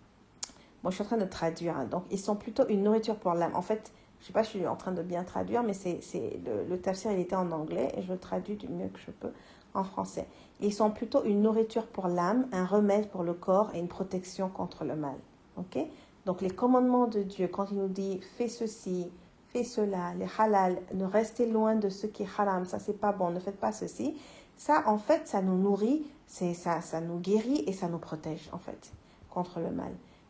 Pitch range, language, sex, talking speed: 180-225 Hz, French, female, 245 wpm